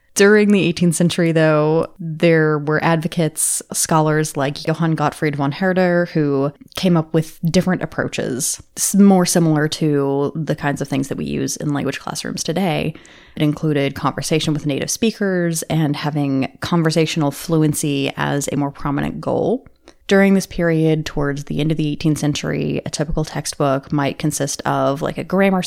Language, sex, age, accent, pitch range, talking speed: English, female, 20-39, American, 140-175 Hz, 160 wpm